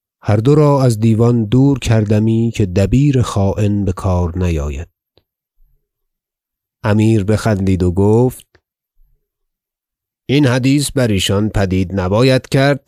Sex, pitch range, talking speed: male, 95-125 Hz, 110 wpm